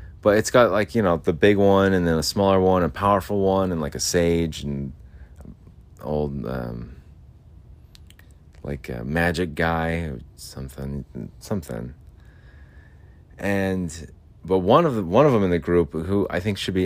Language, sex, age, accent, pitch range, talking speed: English, male, 30-49, American, 75-95 Hz, 165 wpm